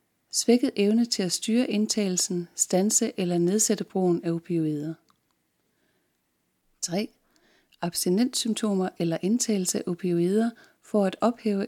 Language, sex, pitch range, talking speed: Danish, female, 175-220 Hz, 110 wpm